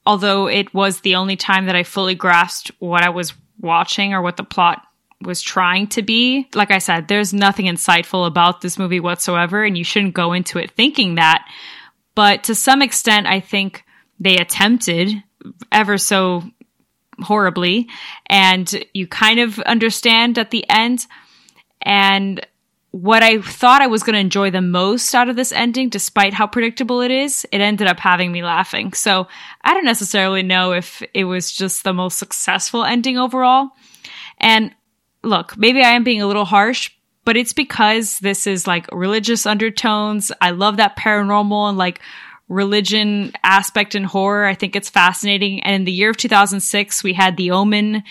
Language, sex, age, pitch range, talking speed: English, female, 10-29, 185-225 Hz, 175 wpm